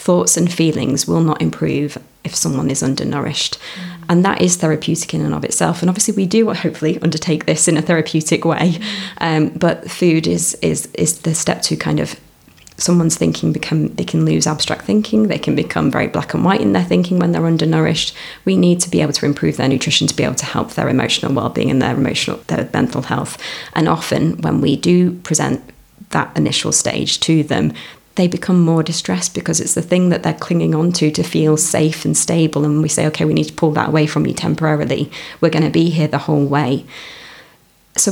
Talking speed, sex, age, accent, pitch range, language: 210 wpm, female, 30-49, British, 150-175 Hz, English